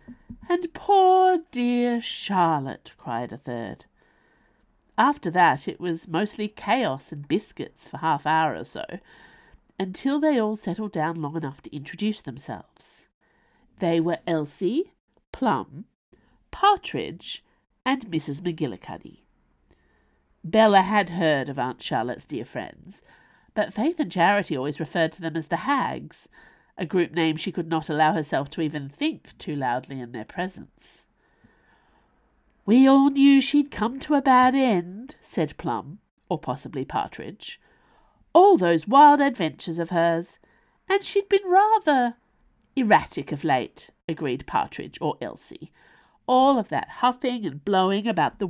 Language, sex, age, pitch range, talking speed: English, female, 50-69, 160-265 Hz, 135 wpm